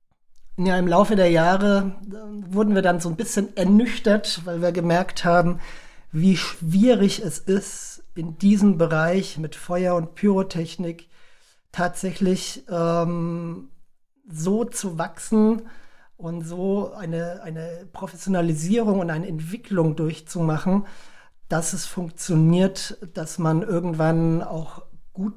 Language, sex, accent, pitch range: German, male, German, 165-195 Hz